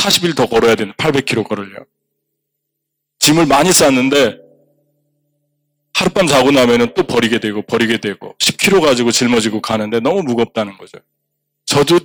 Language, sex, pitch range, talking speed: English, male, 120-165 Hz, 125 wpm